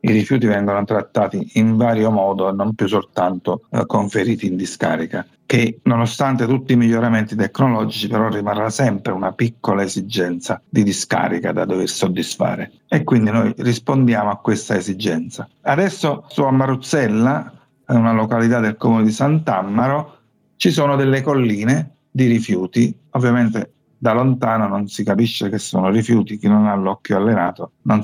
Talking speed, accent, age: 145 wpm, native, 50-69